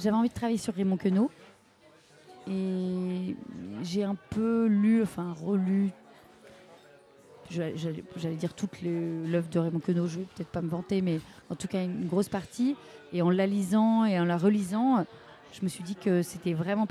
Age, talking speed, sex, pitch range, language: 30-49, 175 wpm, female, 180-215 Hz, French